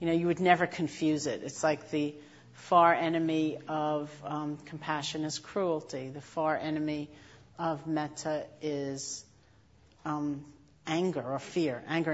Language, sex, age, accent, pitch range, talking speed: English, female, 50-69, American, 140-165 Hz, 140 wpm